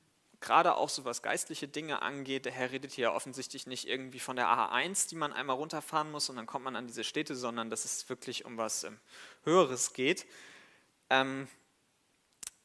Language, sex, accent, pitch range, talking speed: German, male, German, 125-150 Hz, 190 wpm